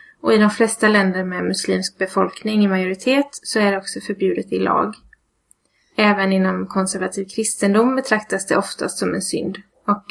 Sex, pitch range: female, 190-220 Hz